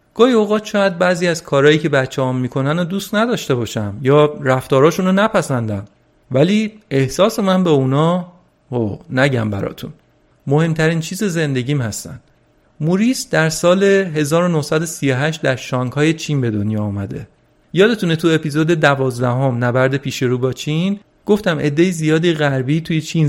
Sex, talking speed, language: male, 140 wpm, Persian